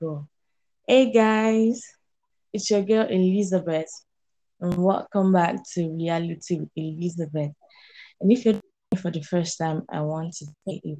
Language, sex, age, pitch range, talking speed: English, female, 20-39, 160-200 Hz, 135 wpm